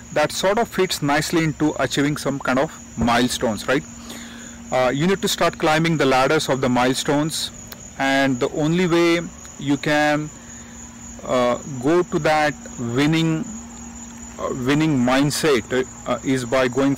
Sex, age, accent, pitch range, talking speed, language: male, 30-49, Indian, 130-155 Hz, 145 wpm, English